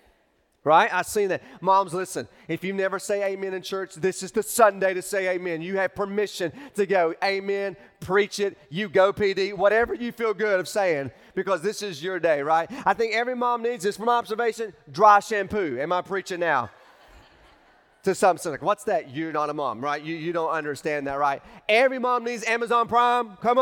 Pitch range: 180-225 Hz